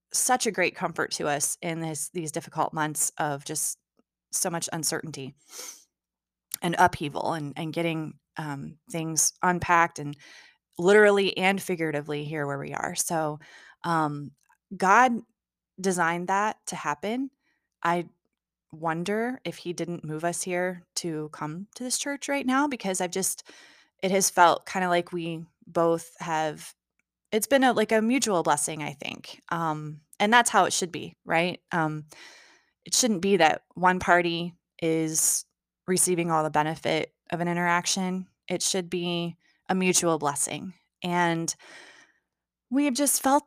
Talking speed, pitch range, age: 150 wpm, 155-190 Hz, 20-39